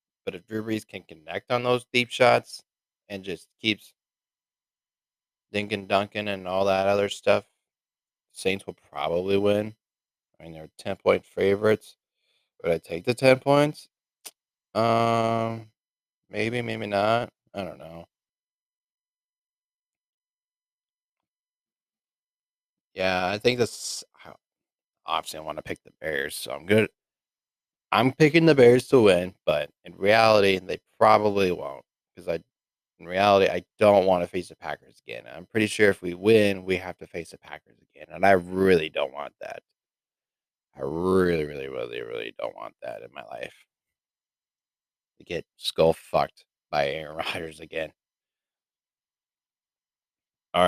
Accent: American